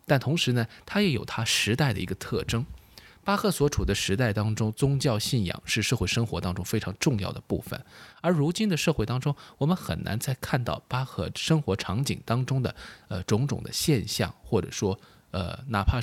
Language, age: Chinese, 20-39